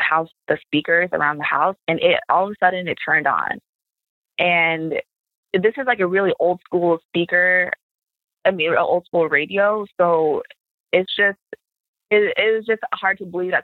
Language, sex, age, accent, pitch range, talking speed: English, female, 20-39, American, 160-195 Hz, 185 wpm